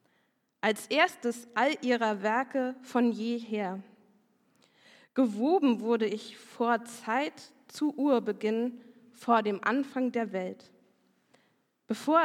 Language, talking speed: German, 100 wpm